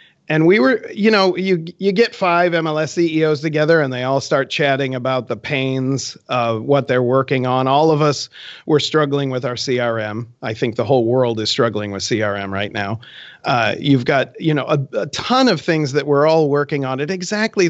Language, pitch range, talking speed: English, 130-175 Hz, 205 wpm